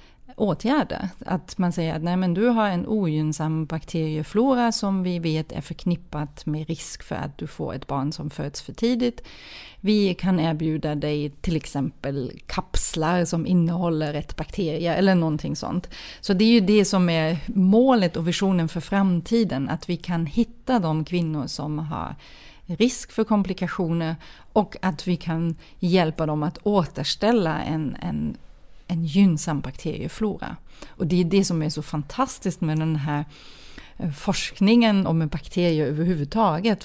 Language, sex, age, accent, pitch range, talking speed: English, female, 30-49, Swedish, 155-195 Hz, 155 wpm